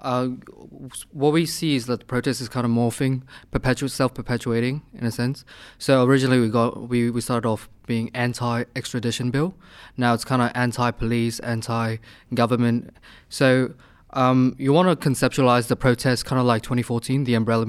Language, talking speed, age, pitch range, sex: English, 175 wpm, 20-39, 120-130 Hz, male